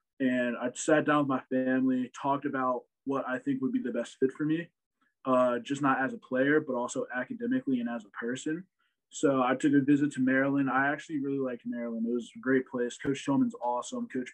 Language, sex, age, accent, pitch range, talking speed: English, male, 20-39, American, 120-145 Hz, 220 wpm